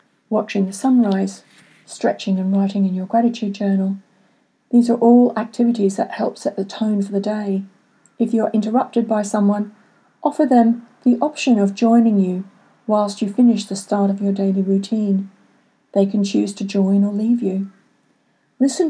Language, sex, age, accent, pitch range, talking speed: English, female, 40-59, British, 195-235 Hz, 170 wpm